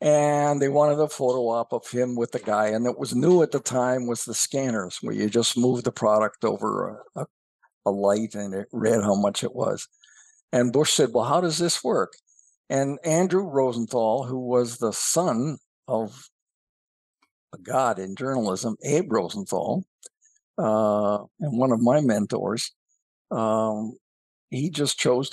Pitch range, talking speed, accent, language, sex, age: 115-155 Hz, 165 wpm, American, English, male, 60-79